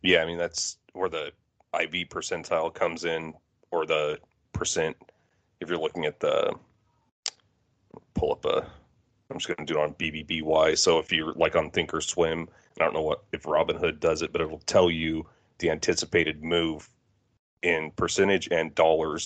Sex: male